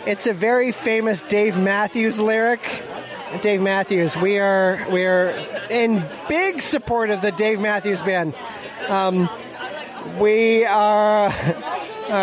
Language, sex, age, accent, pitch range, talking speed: English, male, 20-39, American, 185-230 Hz, 125 wpm